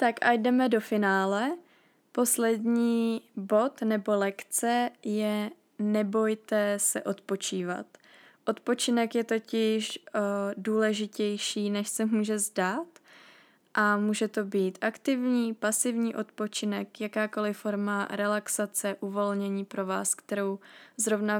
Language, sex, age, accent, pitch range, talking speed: Czech, female, 20-39, native, 200-225 Hz, 100 wpm